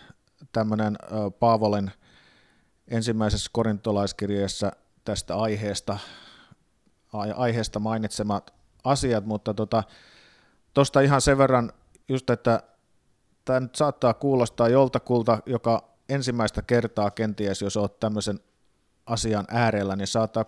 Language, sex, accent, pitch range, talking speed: Finnish, male, native, 105-120 Hz, 90 wpm